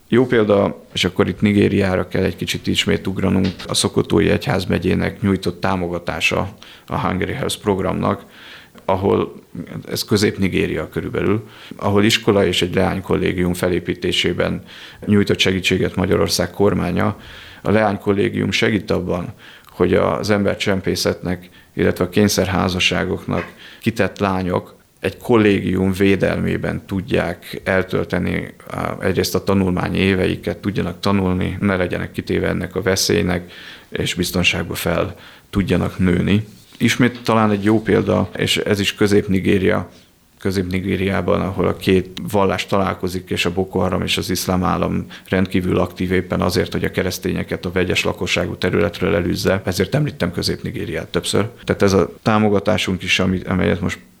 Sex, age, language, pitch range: male, 30-49, Hungarian, 90-100 Hz